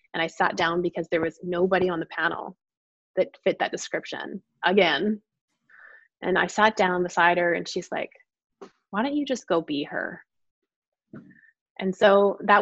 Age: 20-39